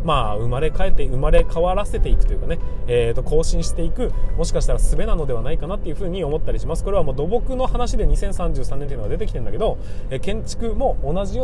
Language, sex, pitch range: Japanese, male, 125-180 Hz